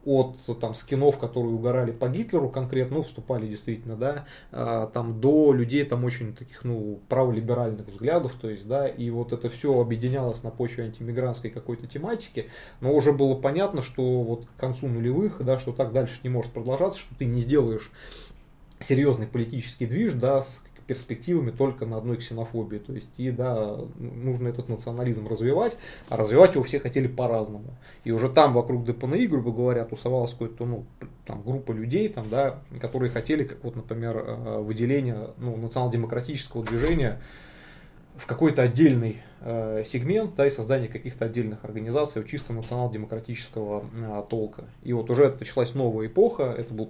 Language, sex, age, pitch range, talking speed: Russian, male, 20-39, 115-135 Hz, 150 wpm